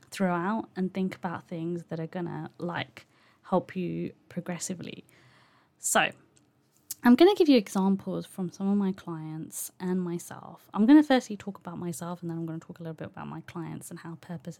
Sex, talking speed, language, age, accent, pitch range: female, 200 wpm, English, 20-39, British, 170-200 Hz